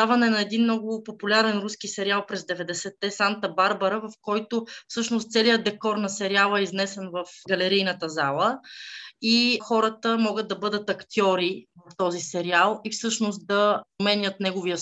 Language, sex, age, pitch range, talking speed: Bulgarian, female, 20-39, 190-230 Hz, 145 wpm